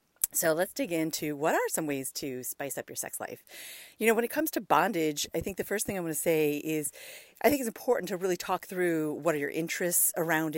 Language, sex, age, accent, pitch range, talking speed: English, female, 40-59, American, 145-175 Hz, 250 wpm